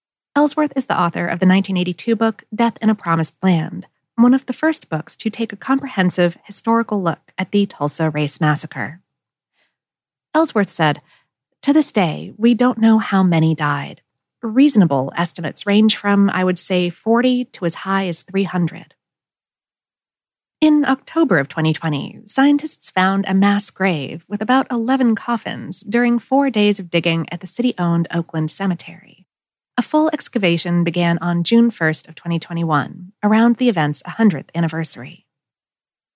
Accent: American